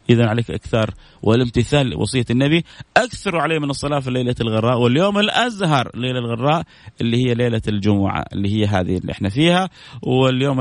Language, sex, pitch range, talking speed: Arabic, male, 120-165 Hz, 160 wpm